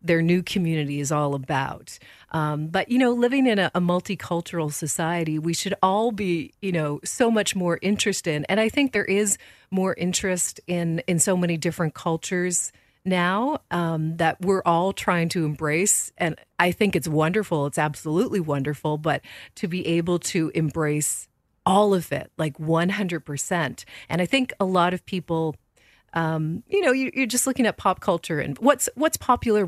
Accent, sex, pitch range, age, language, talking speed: American, female, 155-200 Hz, 40-59, English, 180 wpm